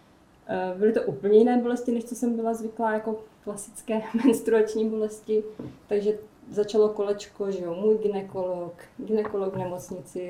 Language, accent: Czech, native